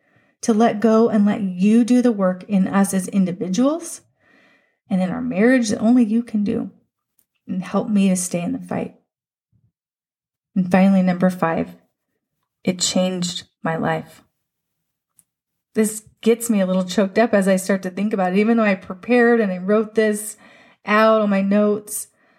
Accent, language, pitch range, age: American, English, 185-225 Hz, 30-49